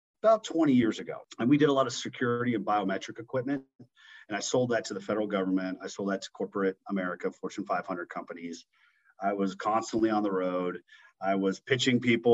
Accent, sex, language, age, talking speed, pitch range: American, male, English, 40-59, 200 wpm, 100-135 Hz